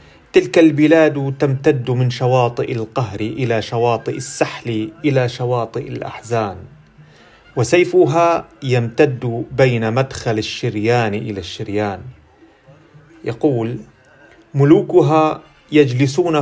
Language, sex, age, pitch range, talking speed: Arabic, male, 40-59, 115-155 Hz, 80 wpm